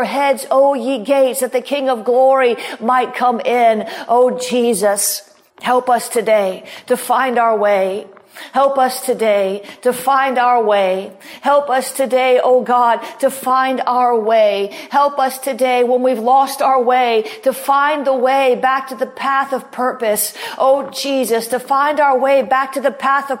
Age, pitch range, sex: 40-59, 230-265 Hz, female